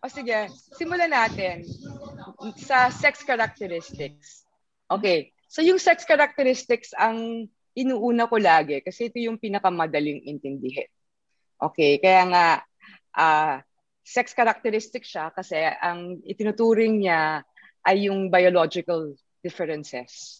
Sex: female